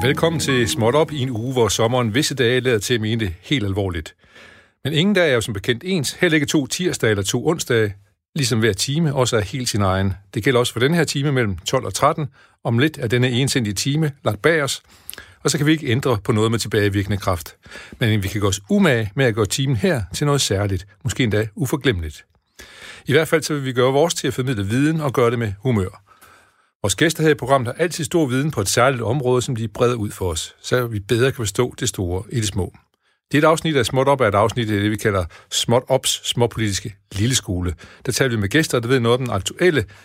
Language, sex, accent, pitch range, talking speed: Danish, male, native, 105-140 Hz, 245 wpm